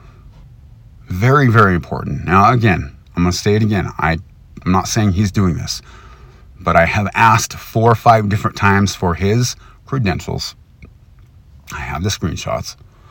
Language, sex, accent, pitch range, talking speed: English, male, American, 85-115 Hz, 155 wpm